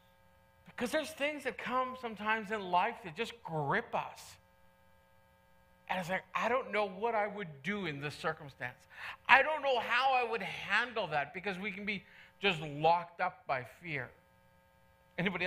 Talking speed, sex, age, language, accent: 165 wpm, male, 40-59, English, American